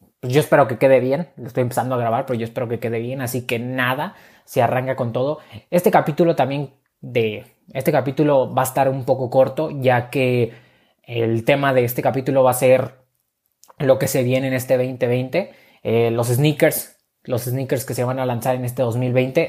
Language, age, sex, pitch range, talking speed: Spanish, 20-39, male, 125-135 Hz, 200 wpm